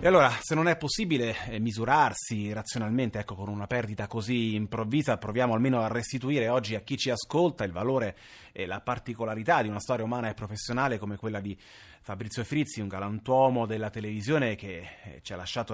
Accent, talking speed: native, 180 wpm